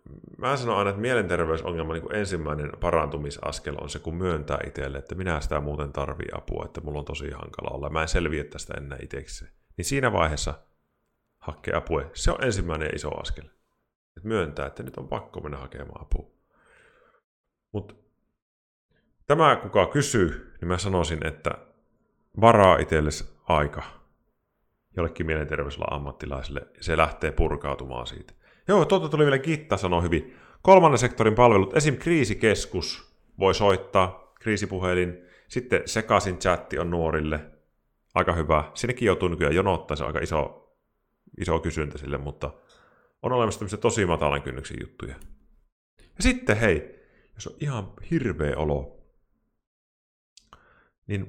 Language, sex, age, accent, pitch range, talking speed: Finnish, male, 30-49, native, 75-100 Hz, 135 wpm